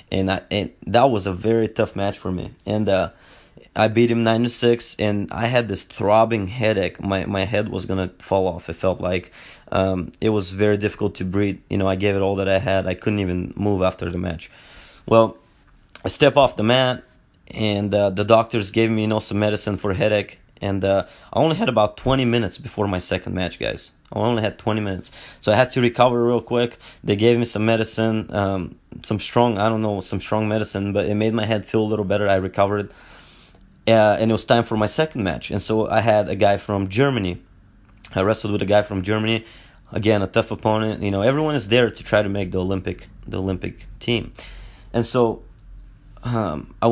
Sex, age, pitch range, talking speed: male, 20-39, 95-110 Hz, 220 wpm